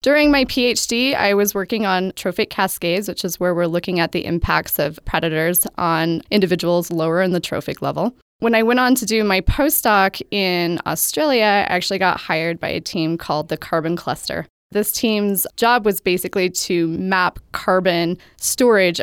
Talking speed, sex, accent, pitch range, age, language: 175 wpm, female, American, 170-210 Hz, 20-39, English